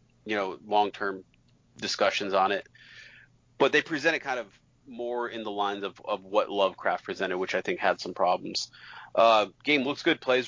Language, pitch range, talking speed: English, 105-120 Hz, 180 wpm